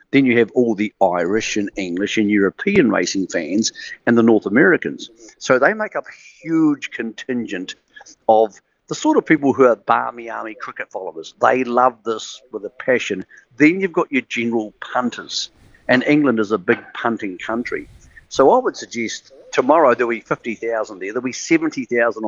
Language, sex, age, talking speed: English, male, 50-69, 175 wpm